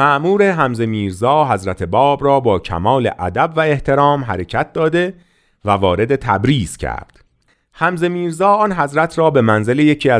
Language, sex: Persian, male